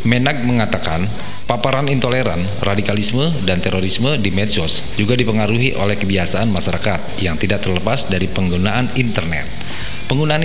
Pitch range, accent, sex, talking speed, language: 95-125 Hz, native, male, 120 wpm, Indonesian